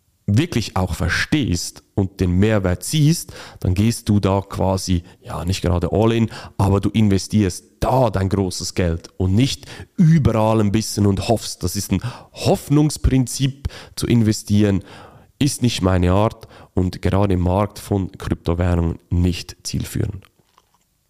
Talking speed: 135 wpm